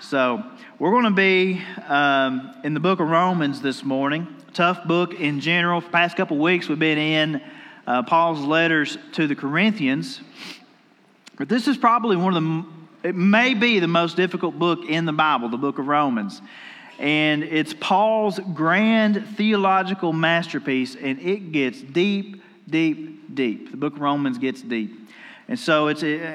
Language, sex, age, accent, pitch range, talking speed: English, male, 40-59, American, 155-200 Hz, 170 wpm